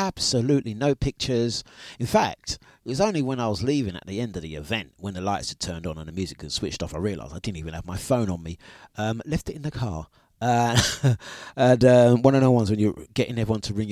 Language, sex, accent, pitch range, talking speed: English, male, British, 105-140 Hz, 255 wpm